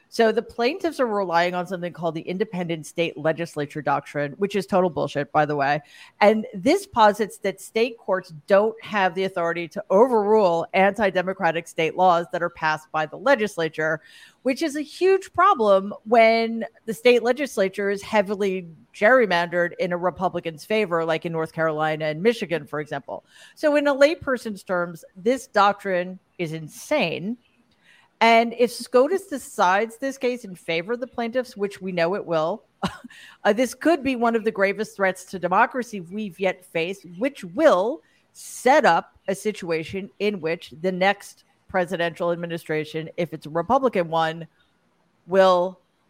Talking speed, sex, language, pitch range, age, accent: 160 wpm, female, English, 170-225 Hz, 40-59, American